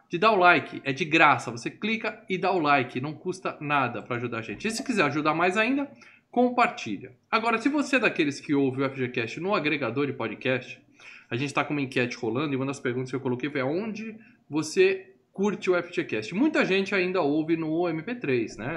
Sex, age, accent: male, 20-39, Brazilian